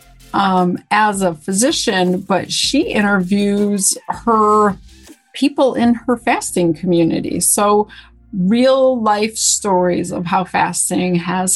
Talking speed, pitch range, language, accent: 110 wpm, 175-210 Hz, English, American